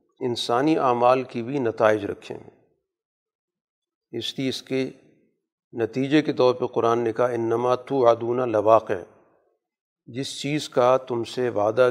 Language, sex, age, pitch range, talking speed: Urdu, male, 40-59, 120-140 Hz, 125 wpm